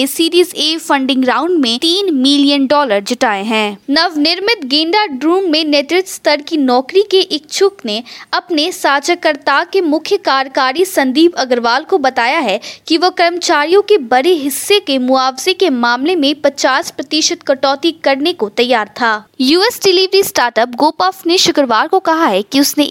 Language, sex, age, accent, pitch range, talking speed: Hindi, female, 20-39, native, 255-345 Hz, 155 wpm